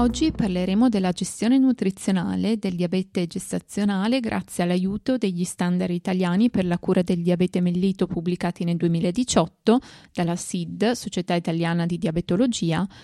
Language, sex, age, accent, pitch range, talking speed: Italian, female, 20-39, native, 175-220 Hz, 130 wpm